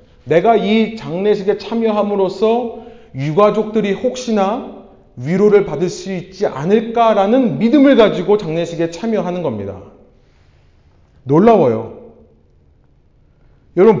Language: Korean